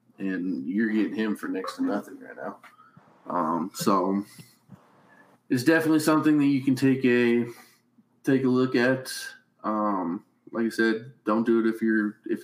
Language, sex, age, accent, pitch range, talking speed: English, male, 20-39, American, 110-135 Hz, 165 wpm